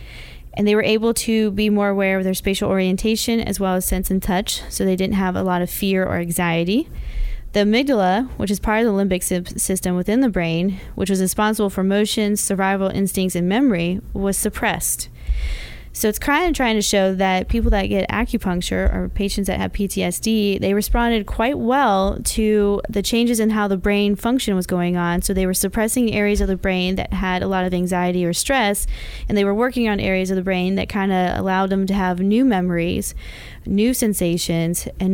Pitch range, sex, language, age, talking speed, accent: 185-215 Hz, female, English, 20-39, 205 wpm, American